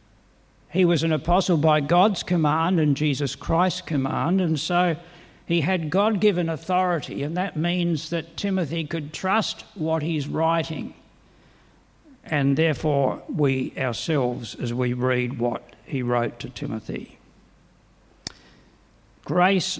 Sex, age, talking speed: male, 60-79, 120 wpm